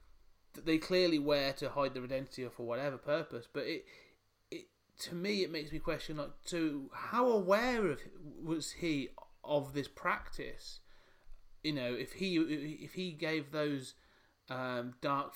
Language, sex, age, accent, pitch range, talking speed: English, male, 30-49, British, 140-180 Hz, 155 wpm